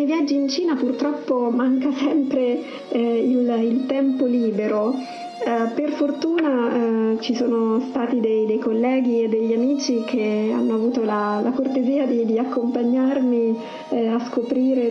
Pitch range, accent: 225-260 Hz, Italian